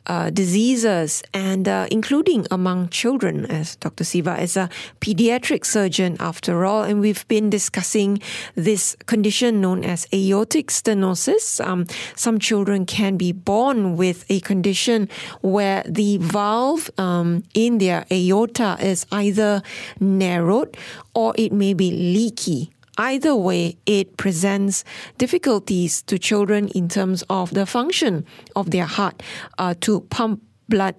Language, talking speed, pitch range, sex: English, 135 wpm, 180-220 Hz, female